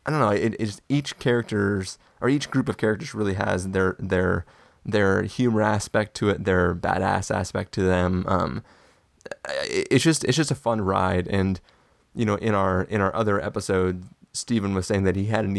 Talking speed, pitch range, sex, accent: 195 wpm, 95-110 Hz, male, American